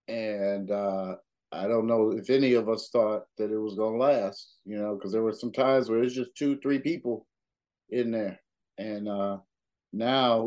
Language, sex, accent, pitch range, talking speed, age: English, male, American, 100-115 Hz, 195 wpm, 50-69